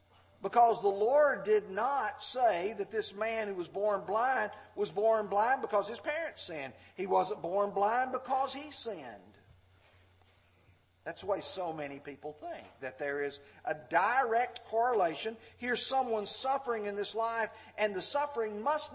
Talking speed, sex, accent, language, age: 160 wpm, male, American, English, 50-69